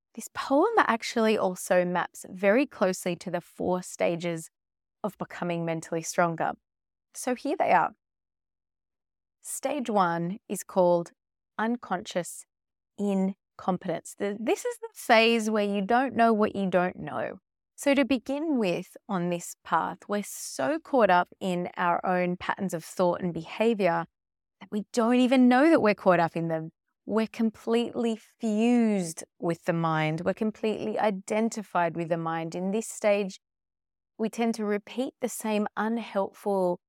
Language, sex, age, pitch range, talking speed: English, female, 20-39, 175-225 Hz, 145 wpm